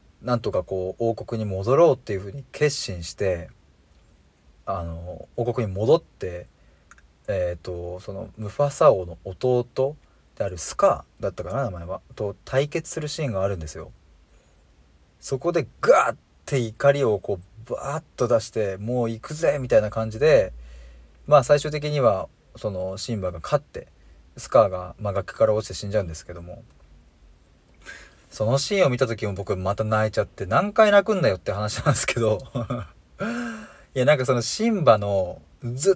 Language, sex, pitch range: Japanese, male, 90-135 Hz